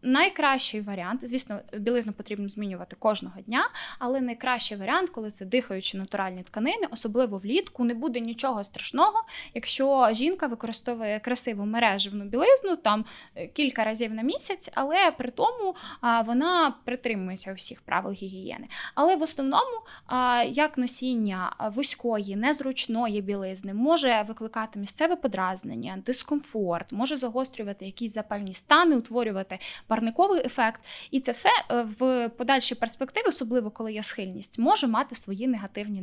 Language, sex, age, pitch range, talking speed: Ukrainian, female, 10-29, 210-265 Hz, 130 wpm